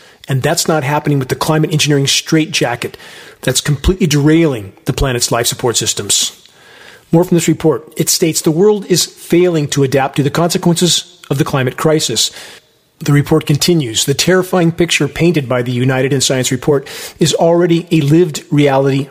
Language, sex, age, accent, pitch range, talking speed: English, male, 40-59, American, 130-155 Hz, 170 wpm